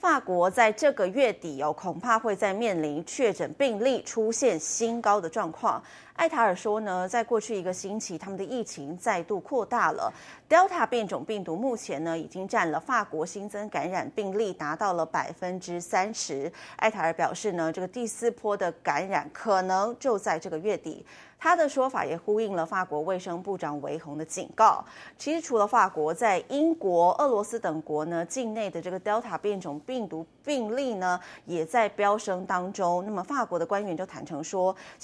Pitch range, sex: 170-235 Hz, female